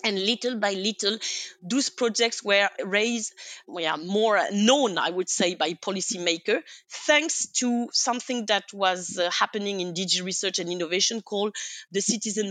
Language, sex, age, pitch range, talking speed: English, female, 30-49, 185-240 Hz, 145 wpm